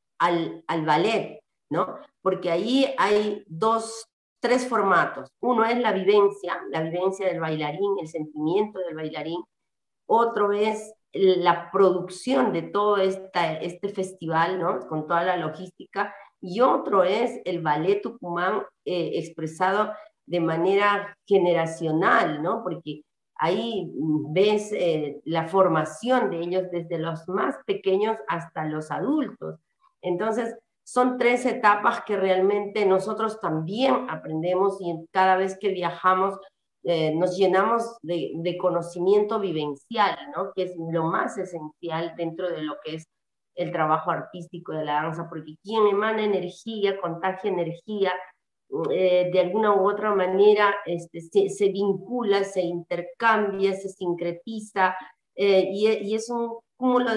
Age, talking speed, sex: 40-59, 135 wpm, female